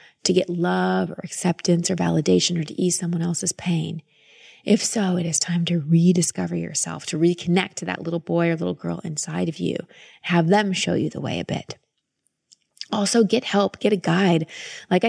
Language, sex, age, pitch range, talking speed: English, female, 30-49, 170-210 Hz, 190 wpm